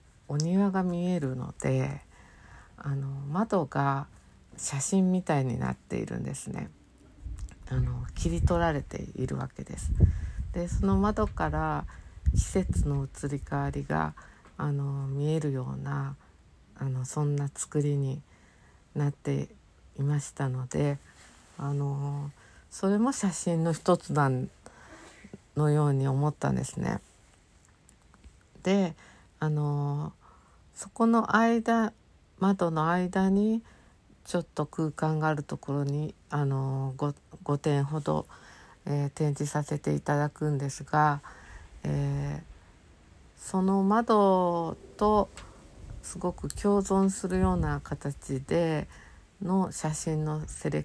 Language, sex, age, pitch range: Japanese, female, 50-69, 110-160 Hz